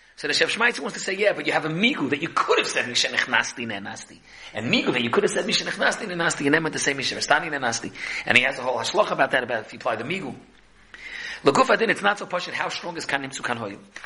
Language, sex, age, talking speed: English, male, 40-59, 275 wpm